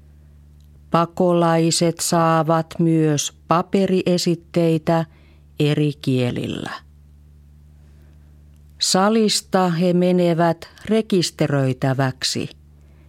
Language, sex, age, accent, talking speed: Finnish, female, 40-59, native, 45 wpm